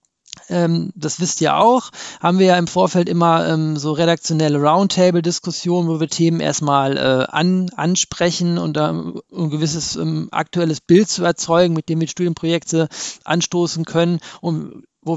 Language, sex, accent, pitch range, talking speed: German, male, German, 150-170 Hz, 155 wpm